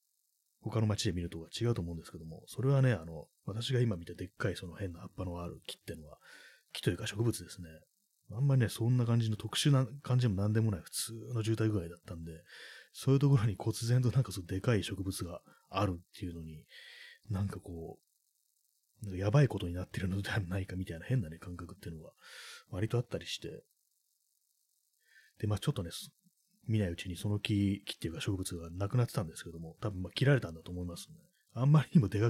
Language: Japanese